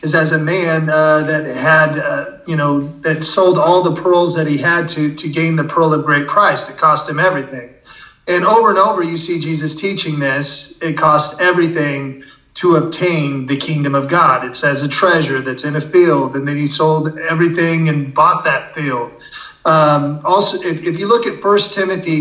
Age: 30-49